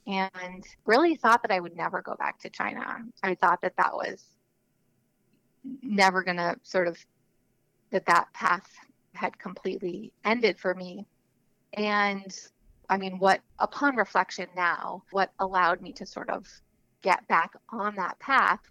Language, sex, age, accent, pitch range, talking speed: English, female, 30-49, American, 185-210 Hz, 150 wpm